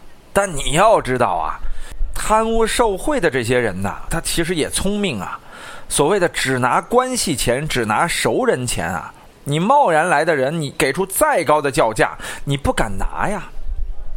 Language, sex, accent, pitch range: Chinese, male, native, 145-220 Hz